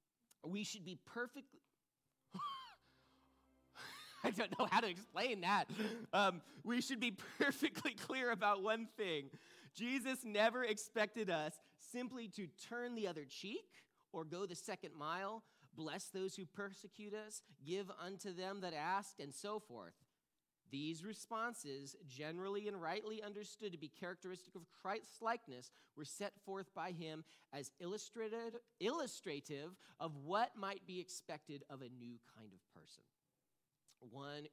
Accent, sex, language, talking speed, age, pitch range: American, male, English, 135 wpm, 30-49, 150-220 Hz